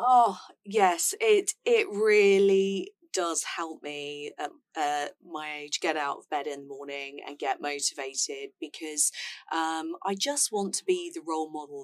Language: English